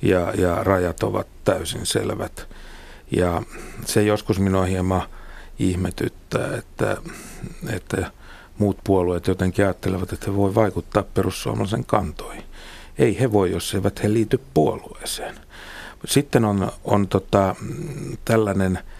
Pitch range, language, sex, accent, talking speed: 90-105 Hz, Finnish, male, native, 120 wpm